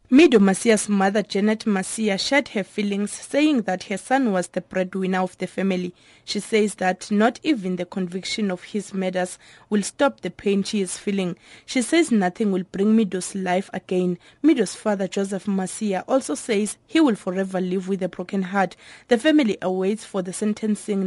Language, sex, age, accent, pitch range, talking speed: English, female, 20-39, South African, 185-235 Hz, 180 wpm